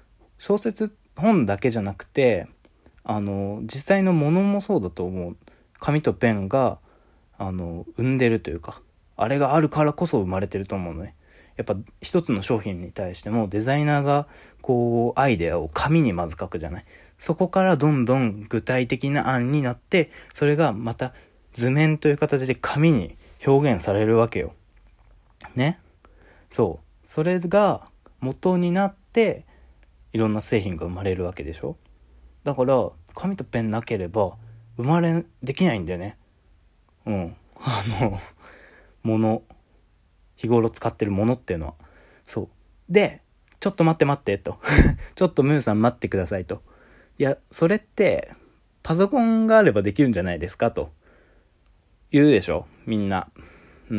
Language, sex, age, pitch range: Japanese, male, 20-39, 90-150 Hz